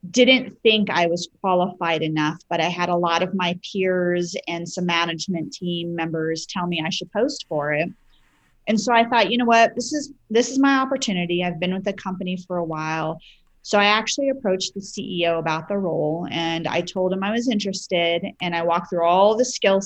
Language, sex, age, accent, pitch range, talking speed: English, female, 30-49, American, 170-210 Hz, 210 wpm